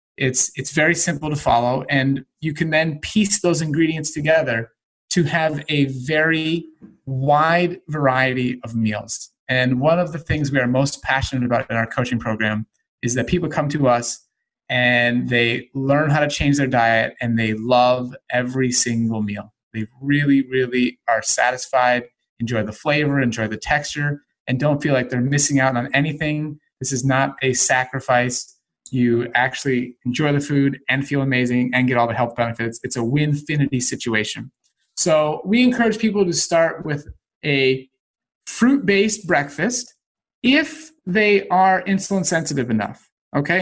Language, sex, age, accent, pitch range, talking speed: English, male, 30-49, American, 125-165 Hz, 160 wpm